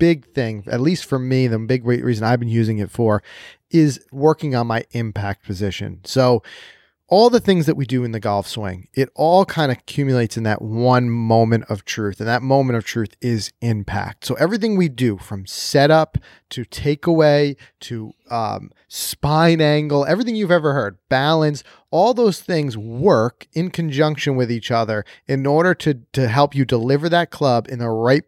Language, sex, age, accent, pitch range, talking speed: English, male, 30-49, American, 115-150 Hz, 185 wpm